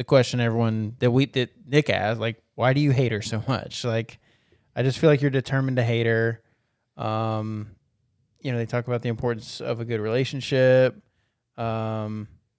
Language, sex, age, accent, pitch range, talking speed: English, male, 20-39, American, 115-125 Hz, 180 wpm